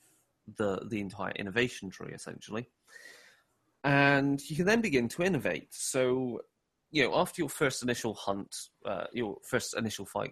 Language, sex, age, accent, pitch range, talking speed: English, male, 30-49, British, 95-120 Hz, 150 wpm